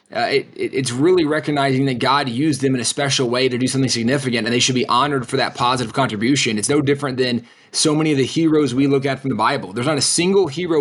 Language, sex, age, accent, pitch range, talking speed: English, male, 20-39, American, 140-210 Hz, 250 wpm